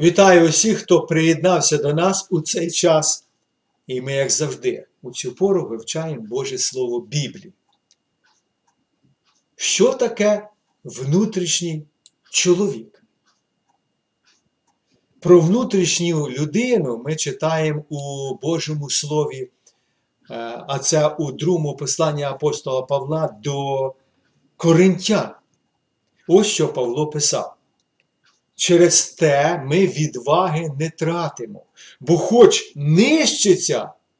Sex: male